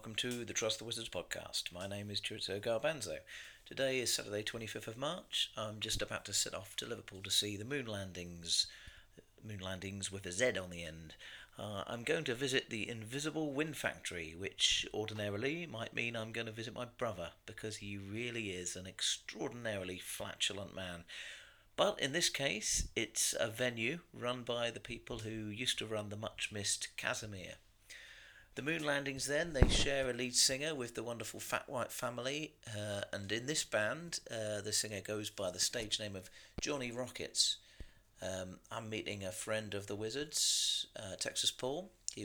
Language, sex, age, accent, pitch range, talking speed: English, male, 40-59, British, 100-125 Hz, 180 wpm